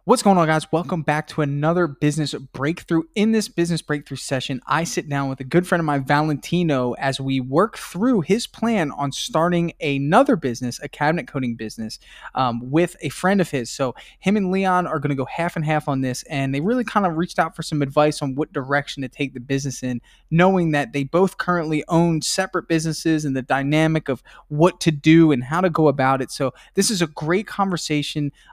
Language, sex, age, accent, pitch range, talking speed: English, male, 20-39, American, 135-175 Hz, 215 wpm